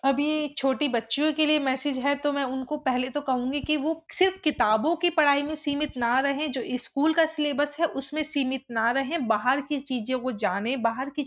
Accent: Indian